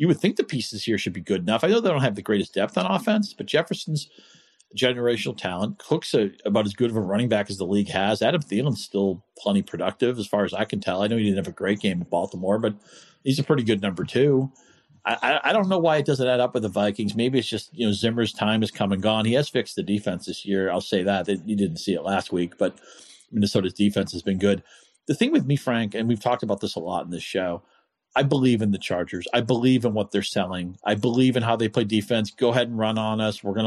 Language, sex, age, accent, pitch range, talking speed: English, male, 40-59, American, 100-115 Hz, 270 wpm